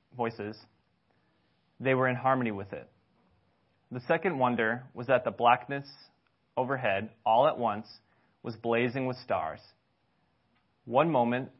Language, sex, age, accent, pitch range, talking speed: English, male, 20-39, American, 115-135 Hz, 125 wpm